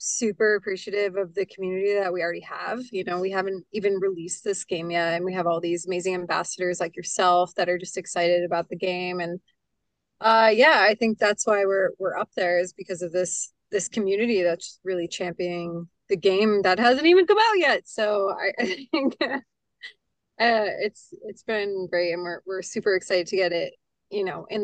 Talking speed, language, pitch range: 200 wpm, English, 180-210 Hz